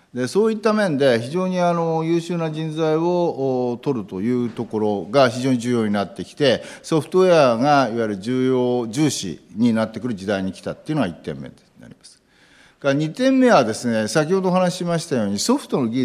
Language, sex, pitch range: Japanese, male, 125-185 Hz